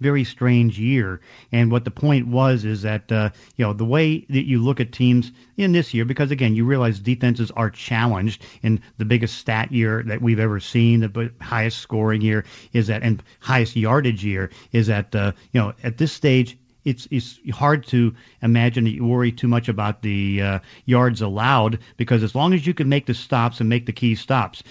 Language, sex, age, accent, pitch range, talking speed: English, male, 40-59, American, 110-125 Hz, 210 wpm